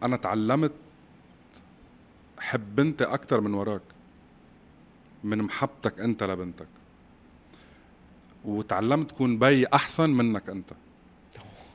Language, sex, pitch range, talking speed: Arabic, male, 100-130 Hz, 85 wpm